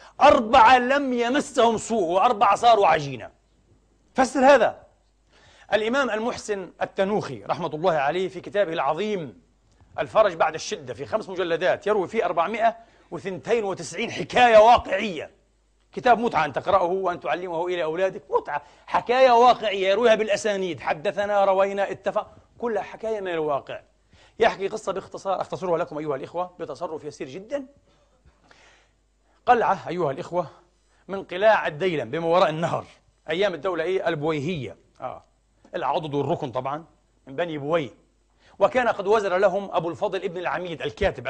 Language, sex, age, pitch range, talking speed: Arabic, male, 40-59, 170-220 Hz, 130 wpm